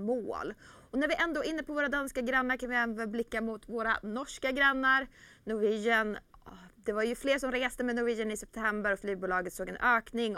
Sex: female